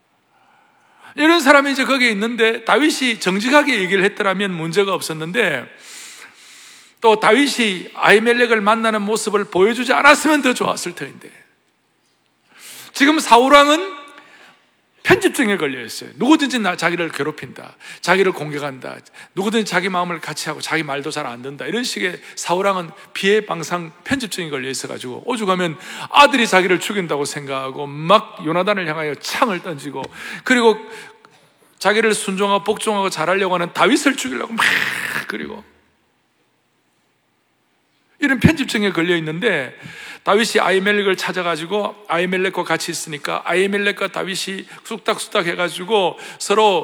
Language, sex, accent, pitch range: Korean, male, native, 170-225 Hz